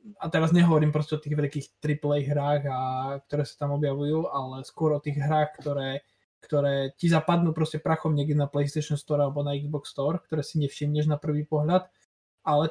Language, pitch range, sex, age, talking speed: Slovak, 140-160 Hz, male, 20-39, 190 wpm